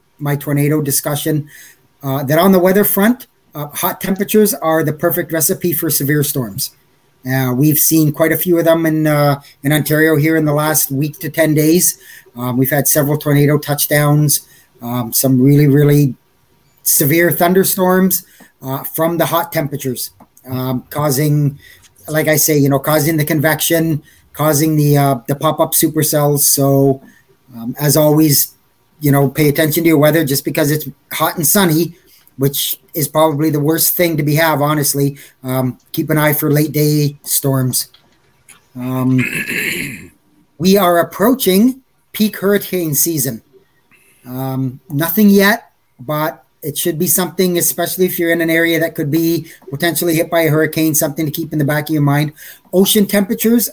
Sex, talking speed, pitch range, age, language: male, 165 wpm, 140-165 Hz, 30-49, English